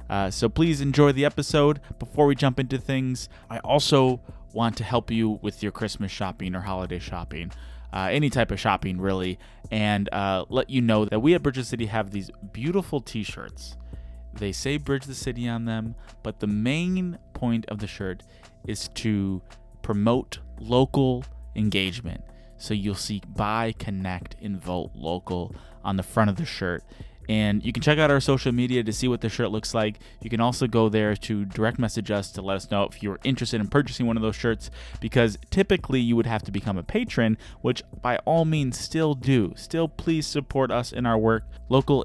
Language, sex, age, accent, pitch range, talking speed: English, male, 20-39, American, 100-125 Hz, 195 wpm